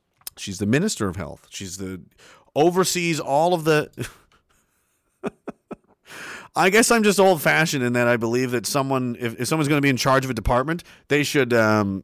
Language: English